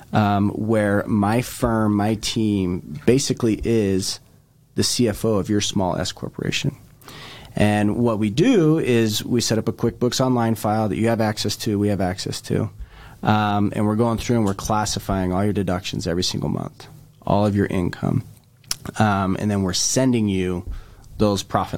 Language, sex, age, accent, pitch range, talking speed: English, male, 30-49, American, 95-115 Hz, 170 wpm